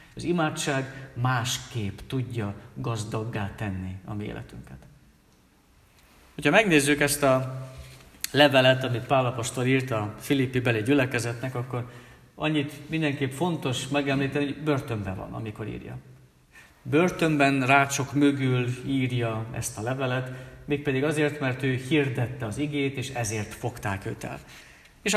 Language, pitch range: Hungarian, 115-145 Hz